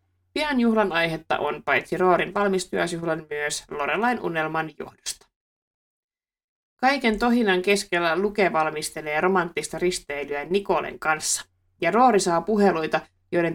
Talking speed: 110 wpm